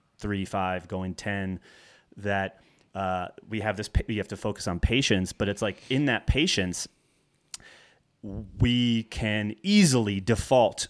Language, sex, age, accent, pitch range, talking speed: English, male, 30-49, American, 100-125 Hz, 140 wpm